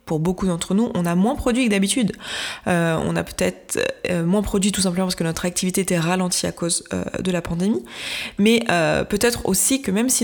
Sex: female